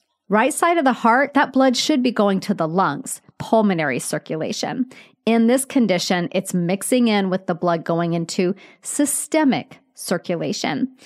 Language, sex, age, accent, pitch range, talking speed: English, female, 40-59, American, 185-250 Hz, 150 wpm